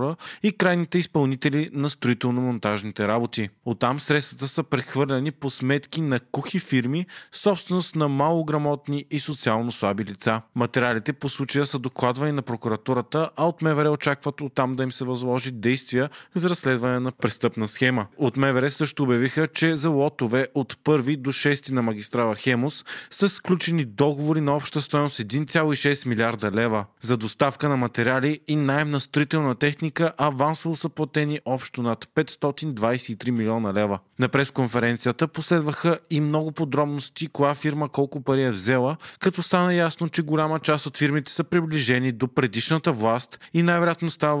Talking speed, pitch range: 155 wpm, 125-150 Hz